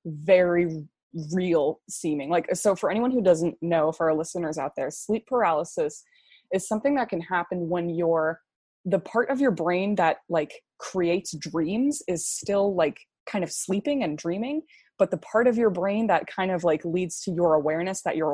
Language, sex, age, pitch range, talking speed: English, female, 20-39, 165-220 Hz, 185 wpm